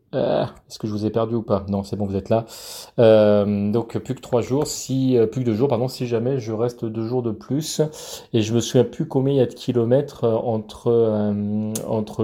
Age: 30-49